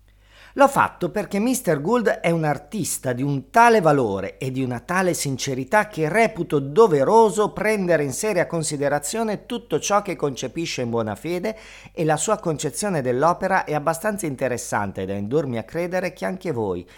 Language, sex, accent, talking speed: Italian, male, native, 165 wpm